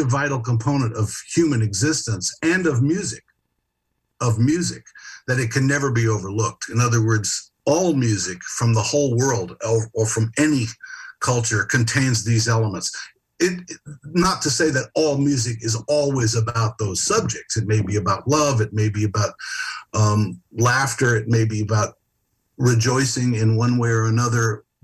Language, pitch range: English, 110-135 Hz